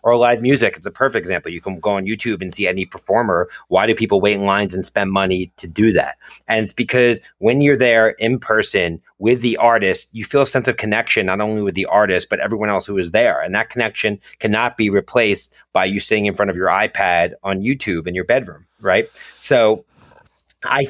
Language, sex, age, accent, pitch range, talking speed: English, male, 30-49, American, 95-120 Hz, 225 wpm